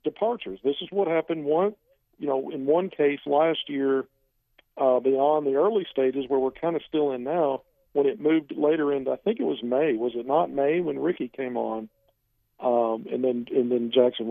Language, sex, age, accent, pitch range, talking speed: English, male, 50-69, American, 130-170 Hz, 205 wpm